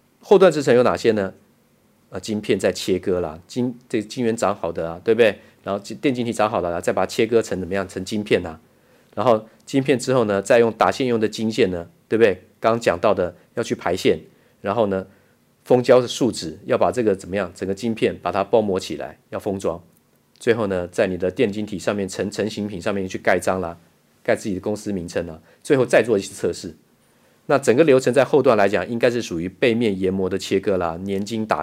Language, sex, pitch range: Chinese, male, 95-115 Hz